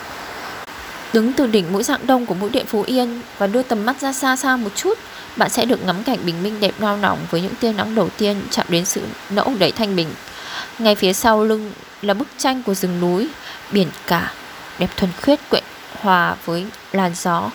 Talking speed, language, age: 215 wpm, Vietnamese, 20-39